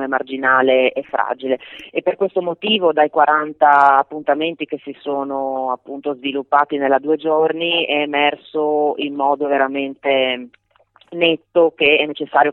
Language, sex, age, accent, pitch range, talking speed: Italian, female, 30-49, native, 135-155 Hz, 130 wpm